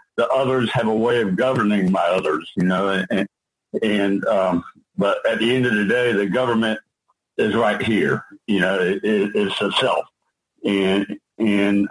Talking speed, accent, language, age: 160 wpm, American, English, 50-69